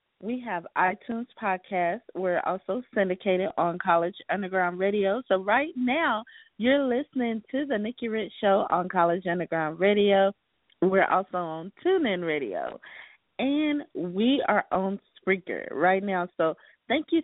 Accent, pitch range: American, 180-230 Hz